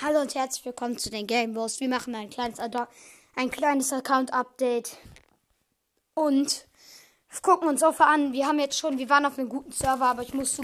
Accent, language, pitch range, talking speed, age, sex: German, German, 225-275 Hz, 190 wpm, 20-39, female